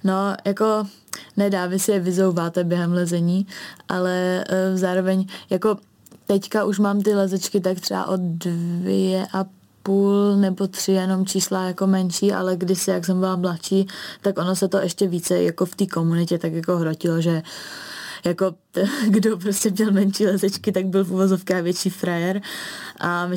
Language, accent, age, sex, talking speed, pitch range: Czech, native, 20-39, female, 165 wpm, 170-190 Hz